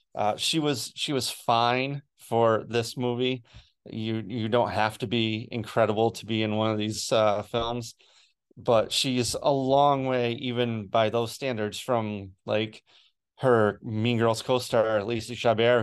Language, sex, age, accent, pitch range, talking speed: English, male, 30-49, American, 110-125 Hz, 155 wpm